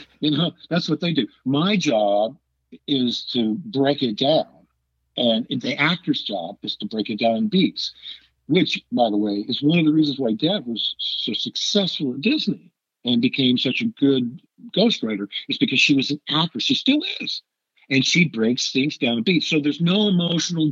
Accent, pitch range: American, 110-145 Hz